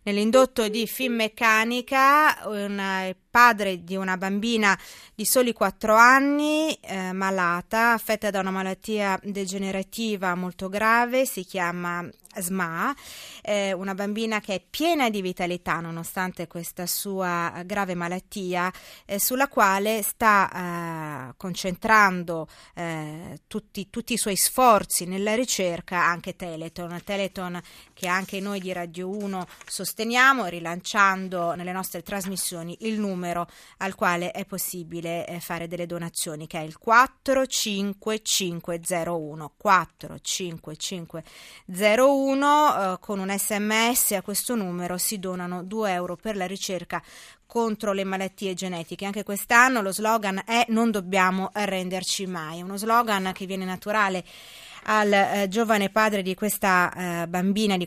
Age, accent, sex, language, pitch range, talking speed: 30-49, native, female, Italian, 180-215 Hz, 130 wpm